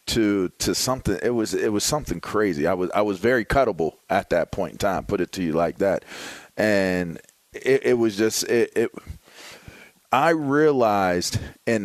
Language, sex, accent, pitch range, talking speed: English, male, American, 100-125 Hz, 180 wpm